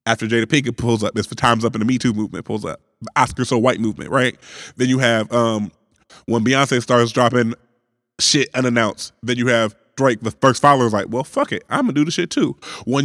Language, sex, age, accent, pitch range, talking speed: English, male, 20-39, American, 120-155 Hz, 230 wpm